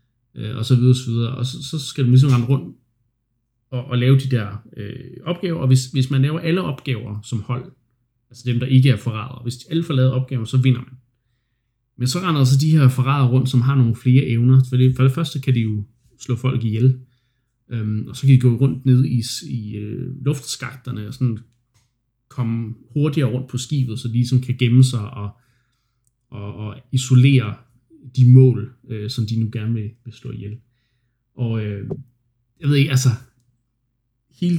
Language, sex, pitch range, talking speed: Danish, male, 120-130 Hz, 200 wpm